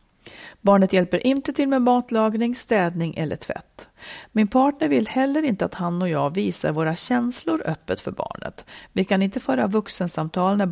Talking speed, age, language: 170 wpm, 40-59, Swedish